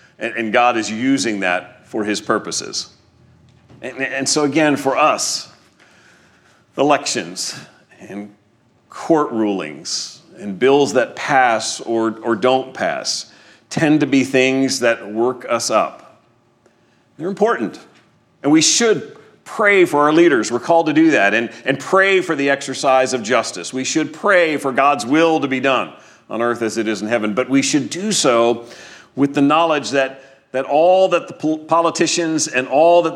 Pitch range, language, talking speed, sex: 115-155 Hz, English, 160 wpm, male